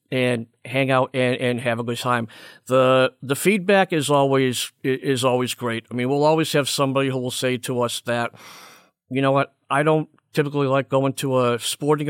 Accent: American